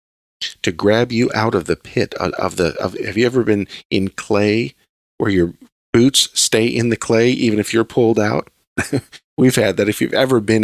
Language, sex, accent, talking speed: English, male, American, 195 wpm